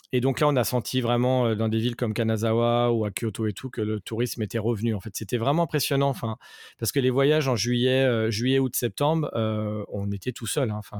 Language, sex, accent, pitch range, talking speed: French, male, French, 110-125 Hz, 240 wpm